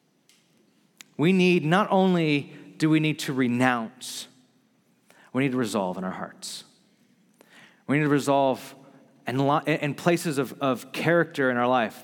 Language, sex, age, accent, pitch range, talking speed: English, male, 30-49, American, 135-170 Hz, 145 wpm